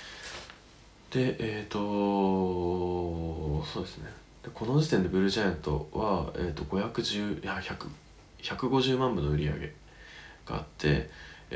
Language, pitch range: Japanese, 85-115 Hz